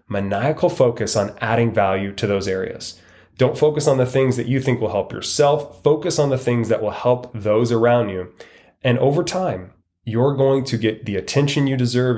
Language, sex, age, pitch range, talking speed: English, male, 20-39, 105-130 Hz, 195 wpm